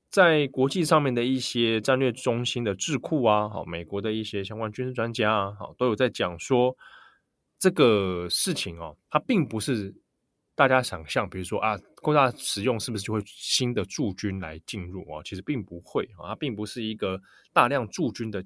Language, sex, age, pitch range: Chinese, male, 20-39, 95-130 Hz